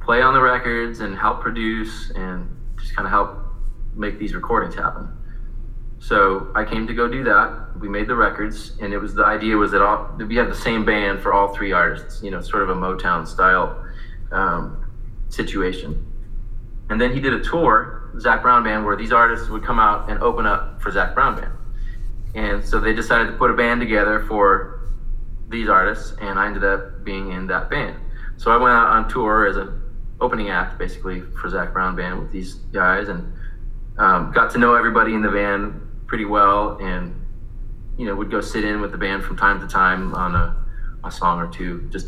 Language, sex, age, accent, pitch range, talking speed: English, male, 20-39, American, 100-115 Hz, 205 wpm